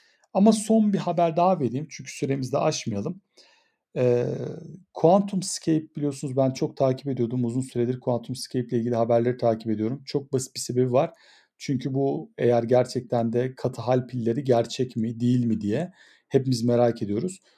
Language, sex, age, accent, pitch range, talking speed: Turkish, male, 40-59, native, 125-155 Hz, 160 wpm